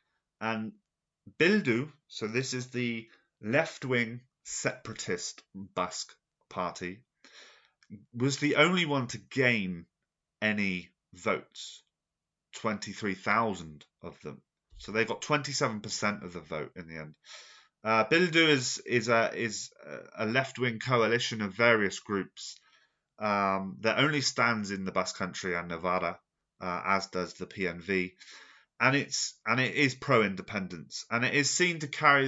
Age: 30-49